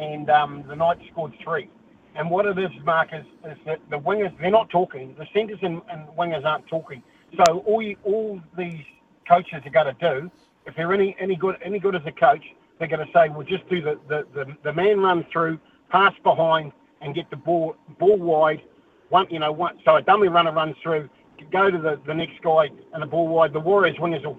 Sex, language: male, English